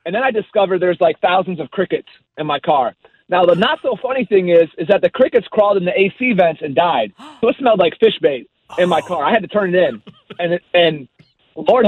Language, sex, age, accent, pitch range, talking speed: English, male, 30-49, American, 155-195 Hz, 240 wpm